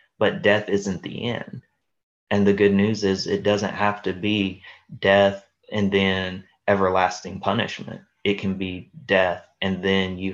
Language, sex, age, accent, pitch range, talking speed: English, male, 20-39, American, 90-100 Hz, 155 wpm